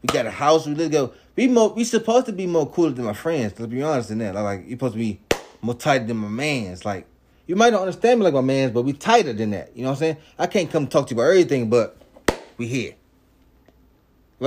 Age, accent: 20-39, American